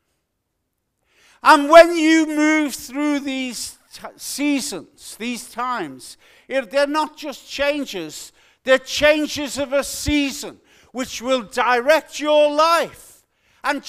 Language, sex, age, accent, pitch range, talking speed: English, male, 50-69, British, 230-310 Hz, 105 wpm